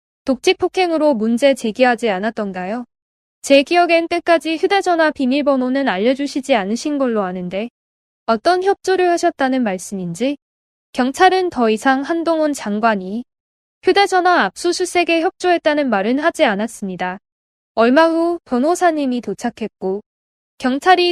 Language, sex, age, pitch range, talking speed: English, female, 10-29, 225-330 Hz, 100 wpm